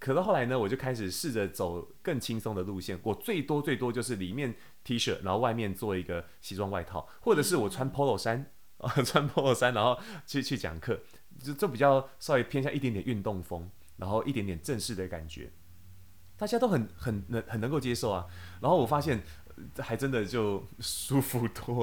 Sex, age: male, 30-49